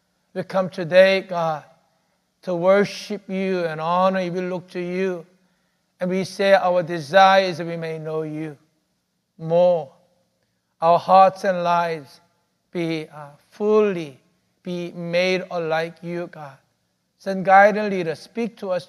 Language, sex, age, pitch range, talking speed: English, male, 60-79, 170-200 Hz, 140 wpm